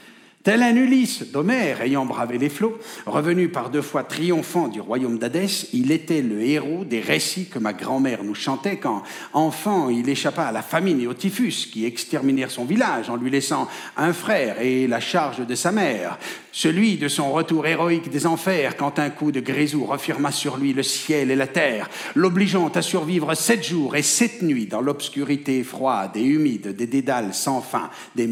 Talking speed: 190 wpm